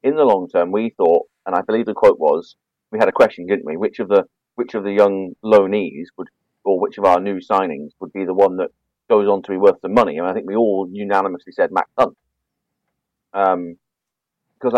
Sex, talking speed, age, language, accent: male, 225 wpm, 30-49, English, British